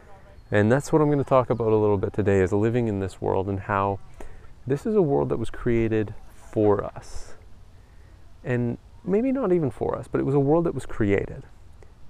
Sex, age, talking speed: male, 30-49, 215 wpm